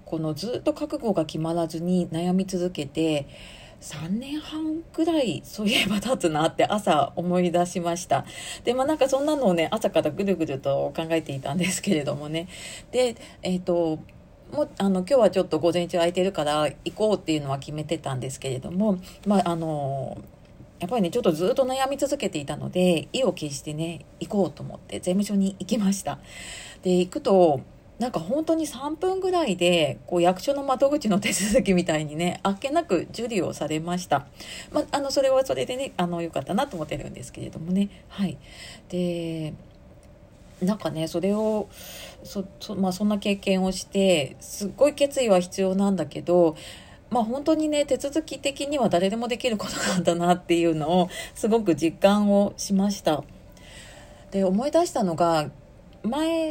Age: 40-59